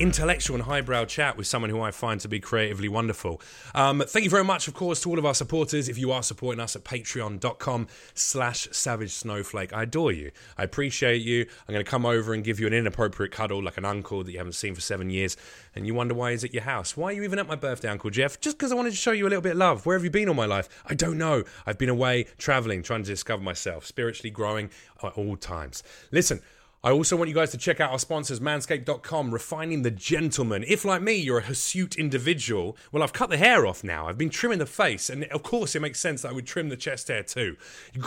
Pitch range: 105-160 Hz